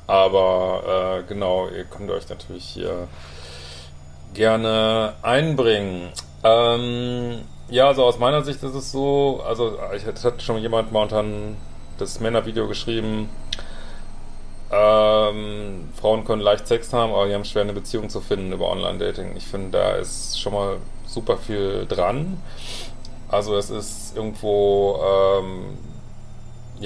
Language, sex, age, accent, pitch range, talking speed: German, male, 30-49, German, 100-115 Hz, 135 wpm